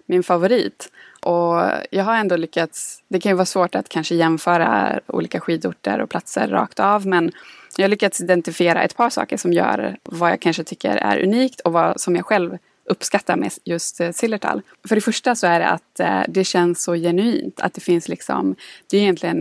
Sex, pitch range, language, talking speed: female, 170-195 Hz, English, 200 wpm